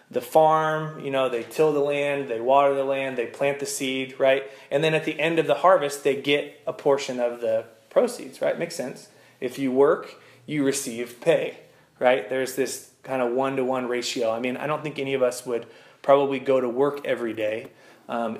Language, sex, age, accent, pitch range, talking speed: English, male, 20-39, American, 120-145 Hz, 210 wpm